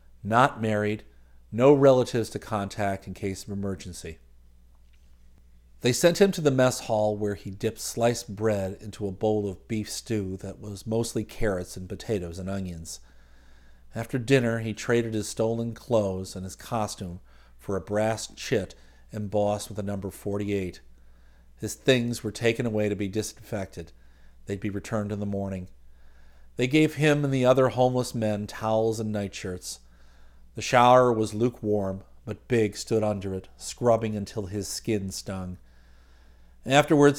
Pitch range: 80-115 Hz